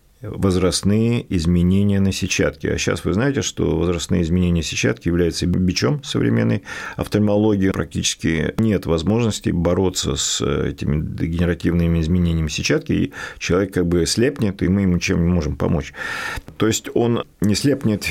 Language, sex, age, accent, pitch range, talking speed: Russian, male, 40-59, native, 85-100 Hz, 145 wpm